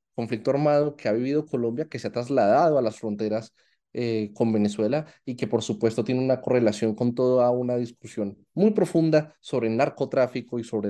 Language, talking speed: Spanish, 185 wpm